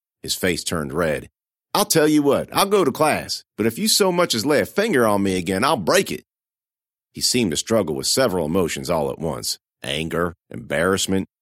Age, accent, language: 50-69, American, English